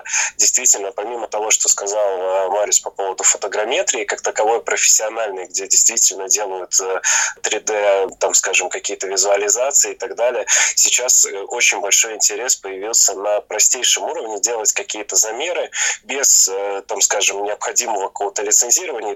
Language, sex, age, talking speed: Russian, male, 20-39, 125 wpm